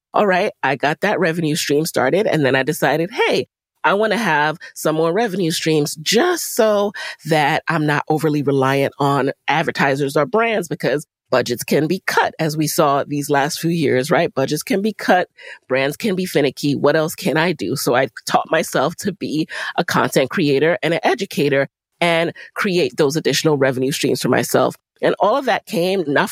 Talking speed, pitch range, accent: 190 wpm, 140-165 Hz, American